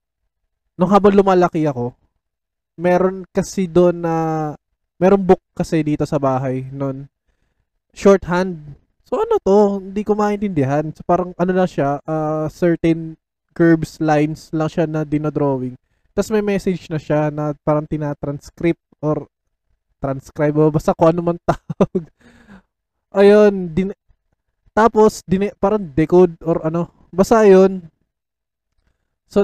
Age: 20-39